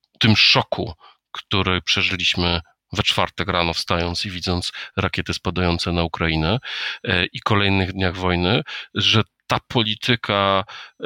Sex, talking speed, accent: male, 115 wpm, native